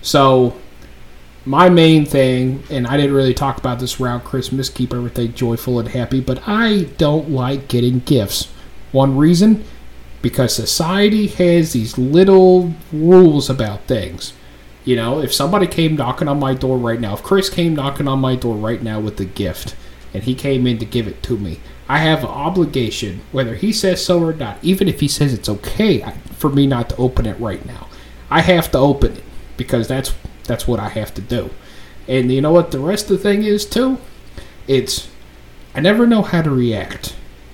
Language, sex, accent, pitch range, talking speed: English, male, American, 115-150 Hz, 195 wpm